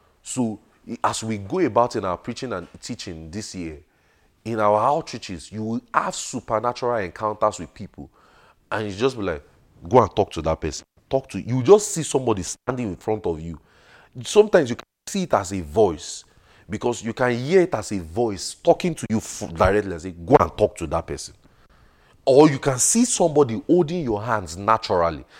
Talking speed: 195 wpm